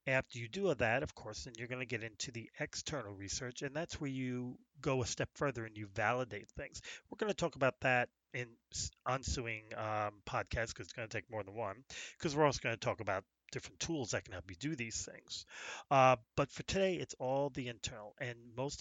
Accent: American